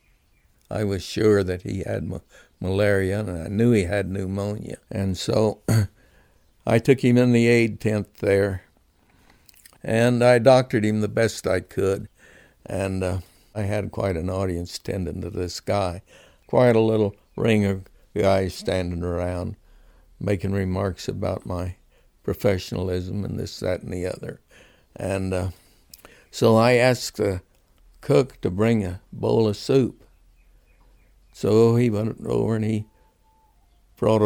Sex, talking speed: male, 140 wpm